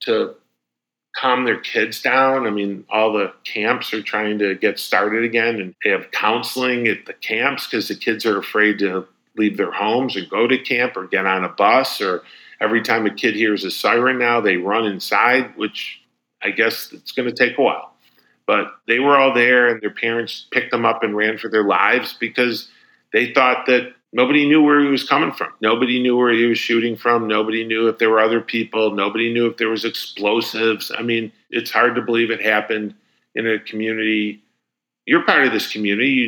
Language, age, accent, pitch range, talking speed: English, 40-59, American, 105-125 Hz, 210 wpm